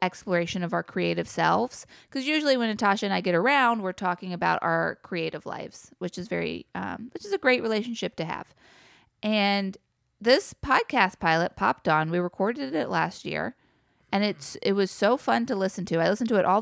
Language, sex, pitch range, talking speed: English, female, 180-210 Hz, 200 wpm